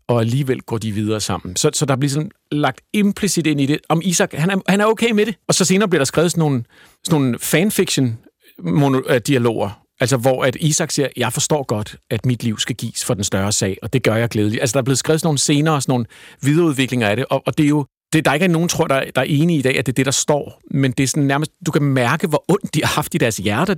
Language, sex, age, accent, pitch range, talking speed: Danish, male, 50-69, native, 120-155 Hz, 280 wpm